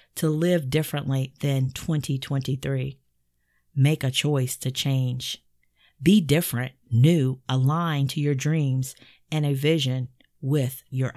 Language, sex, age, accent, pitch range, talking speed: English, female, 40-59, American, 130-155 Hz, 120 wpm